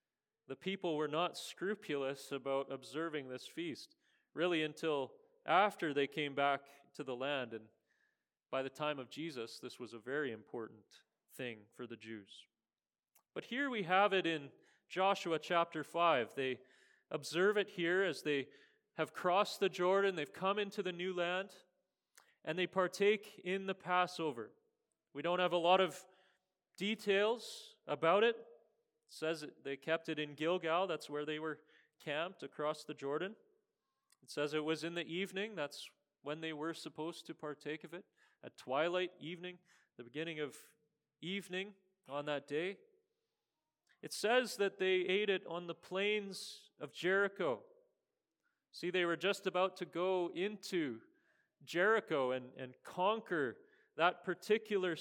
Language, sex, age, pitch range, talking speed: English, male, 30-49, 150-200 Hz, 150 wpm